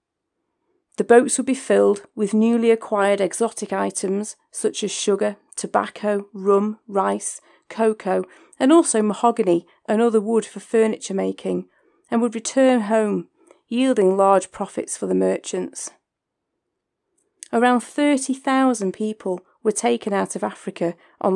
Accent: British